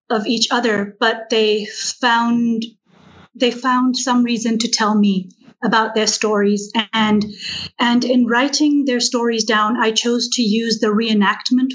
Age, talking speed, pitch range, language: 30-49, 150 wpm, 205-235 Hz, English